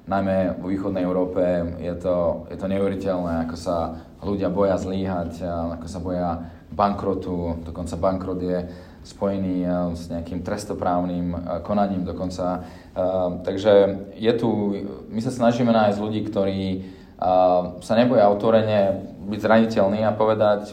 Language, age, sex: English, 20-39, male